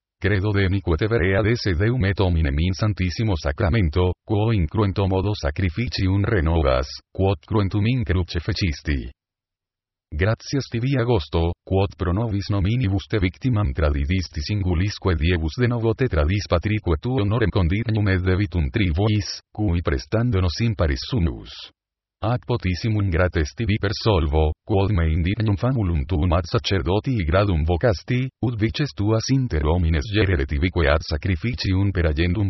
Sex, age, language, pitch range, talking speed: male, 40-59, Spanish, 85-110 Hz, 135 wpm